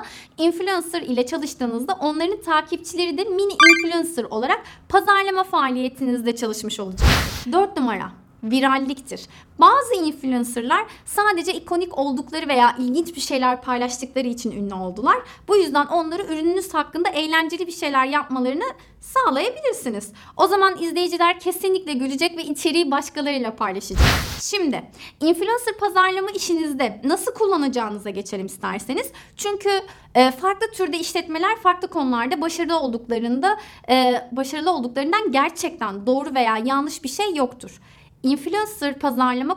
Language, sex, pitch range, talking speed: Turkish, female, 255-365 Hz, 115 wpm